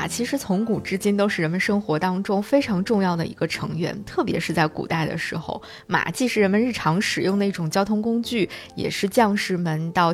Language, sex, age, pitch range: Chinese, female, 20-39, 170-225 Hz